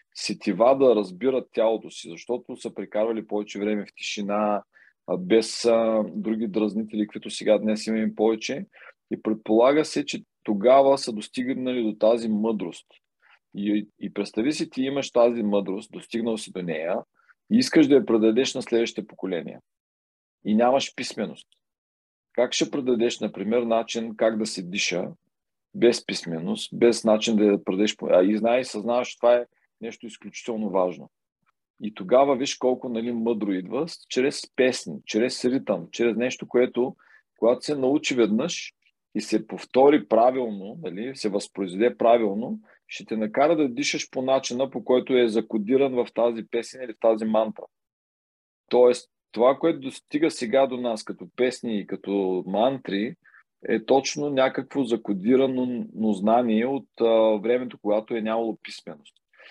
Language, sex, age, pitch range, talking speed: Bulgarian, male, 40-59, 105-125 Hz, 145 wpm